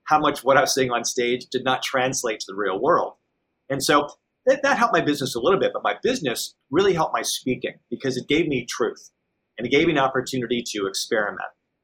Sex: male